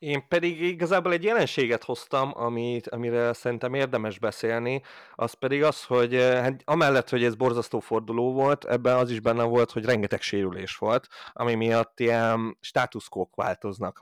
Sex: male